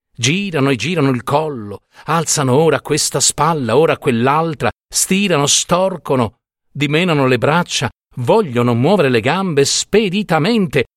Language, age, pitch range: Italian, 50-69, 110-165 Hz